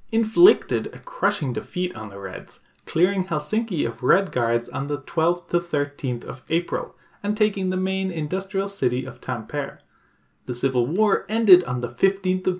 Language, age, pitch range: English, 20-39, 130-175 Hz